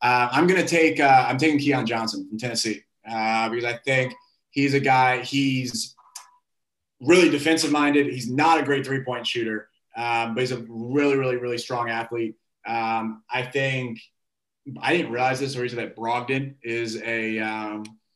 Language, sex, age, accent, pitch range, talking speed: English, male, 20-39, American, 115-130 Hz, 180 wpm